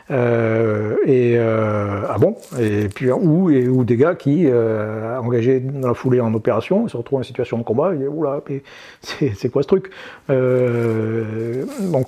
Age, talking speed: 50-69, 180 wpm